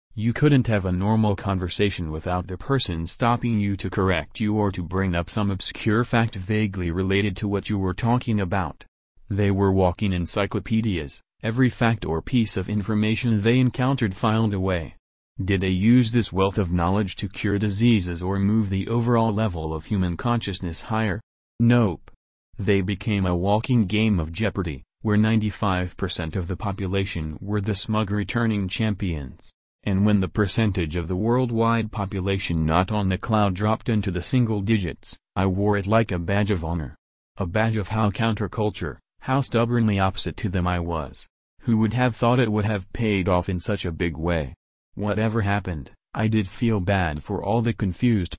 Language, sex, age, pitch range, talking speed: English, male, 30-49, 90-110 Hz, 175 wpm